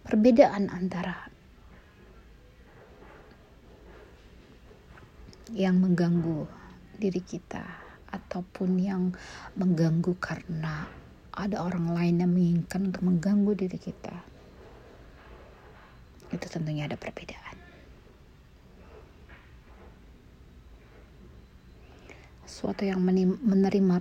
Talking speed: 65 wpm